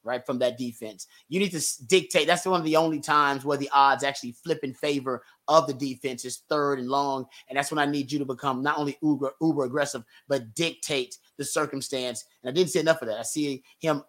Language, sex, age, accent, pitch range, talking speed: English, male, 30-49, American, 135-155 Hz, 235 wpm